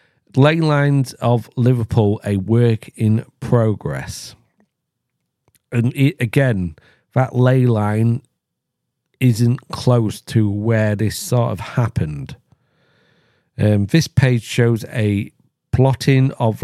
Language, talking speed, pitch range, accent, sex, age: English, 100 wpm, 110-130 Hz, British, male, 40-59